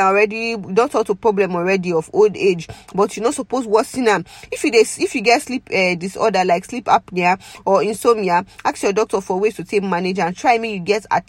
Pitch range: 185-230 Hz